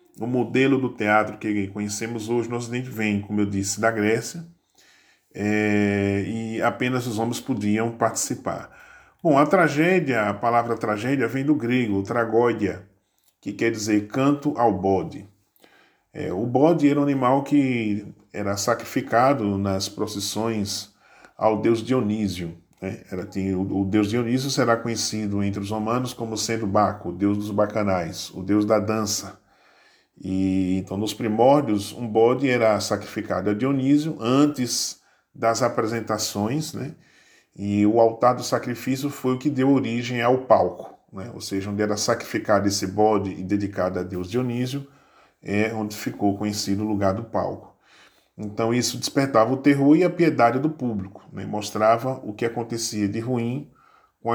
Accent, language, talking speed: Brazilian, Portuguese, 155 wpm